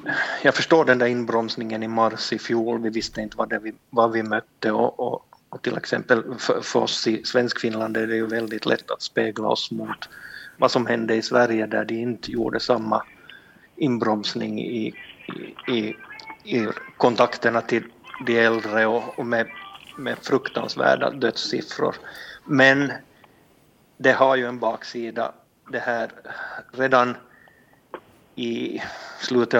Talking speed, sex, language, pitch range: 150 wpm, male, Swedish, 110-120 Hz